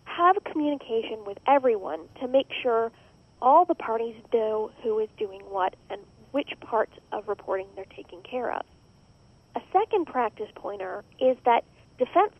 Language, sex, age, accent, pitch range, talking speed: English, female, 40-59, American, 225-300 Hz, 150 wpm